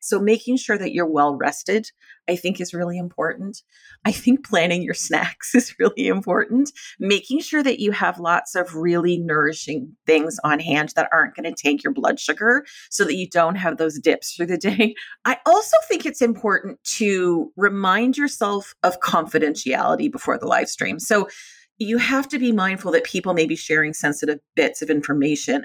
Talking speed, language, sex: 185 wpm, English, female